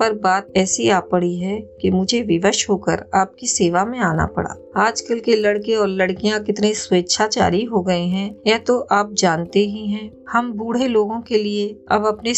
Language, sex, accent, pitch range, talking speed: Hindi, female, native, 190-230 Hz, 185 wpm